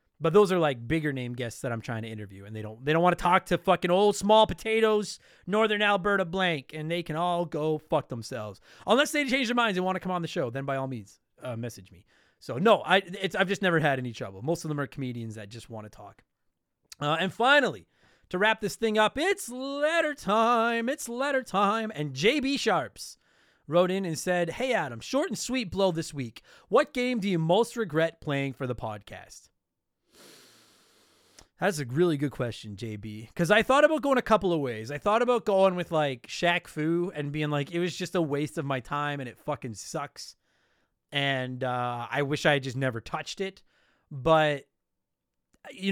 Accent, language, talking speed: American, English, 210 wpm